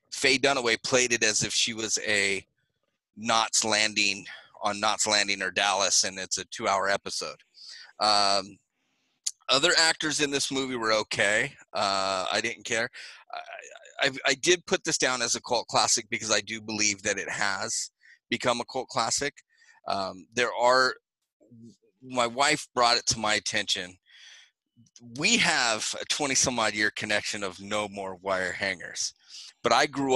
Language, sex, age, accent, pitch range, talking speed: English, male, 30-49, American, 100-120 Hz, 165 wpm